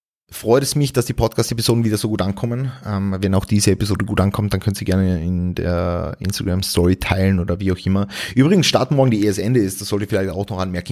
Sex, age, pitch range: male, 30-49, 100-125 Hz